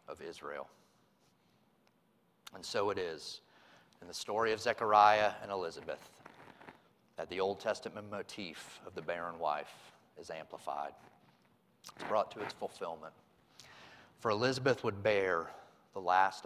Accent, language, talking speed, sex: American, English, 130 wpm, male